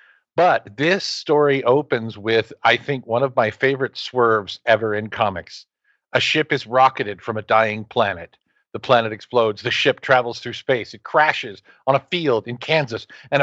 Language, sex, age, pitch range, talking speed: English, male, 50-69, 110-150 Hz, 175 wpm